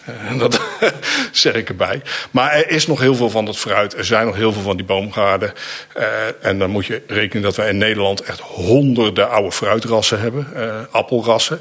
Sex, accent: male, Dutch